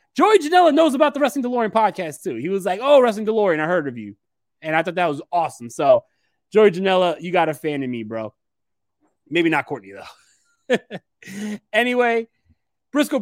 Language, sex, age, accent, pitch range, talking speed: English, male, 20-39, American, 165-265 Hz, 185 wpm